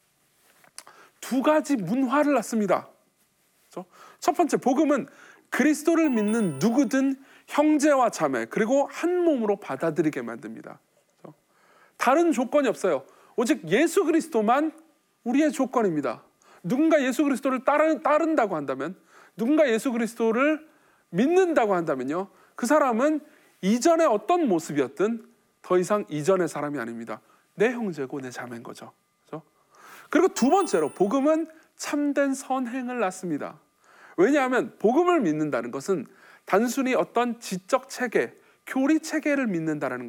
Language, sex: Korean, male